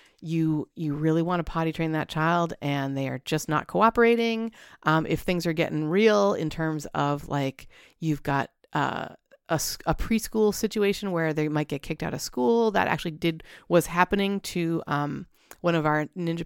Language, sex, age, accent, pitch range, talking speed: English, female, 30-49, American, 160-205 Hz, 185 wpm